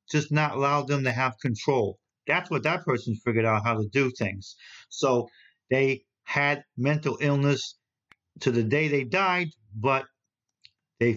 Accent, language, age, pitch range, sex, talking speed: American, English, 50-69, 120-150 Hz, male, 155 wpm